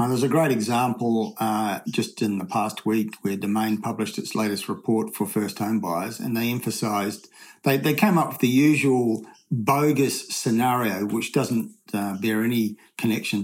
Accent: Australian